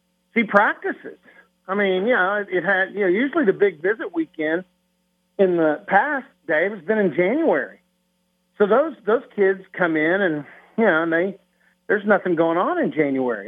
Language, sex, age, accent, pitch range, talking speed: English, male, 50-69, American, 160-195 Hz, 175 wpm